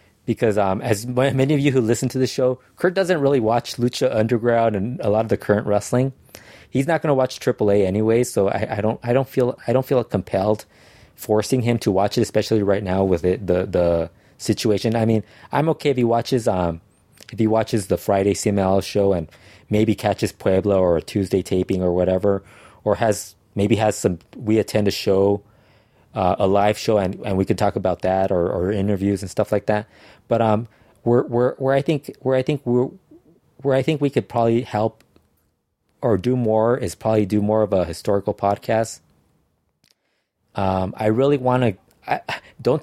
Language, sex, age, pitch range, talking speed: English, male, 20-39, 100-120 Hz, 200 wpm